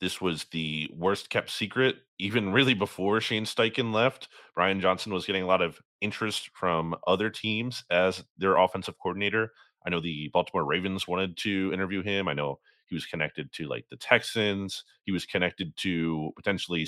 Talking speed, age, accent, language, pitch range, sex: 175 wpm, 30-49, American, English, 85-115 Hz, male